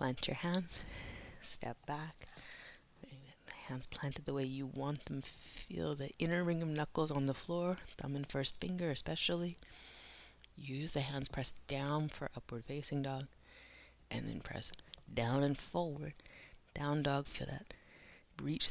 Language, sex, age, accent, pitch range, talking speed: English, female, 30-49, American, 135-175 Hz, 150 wpm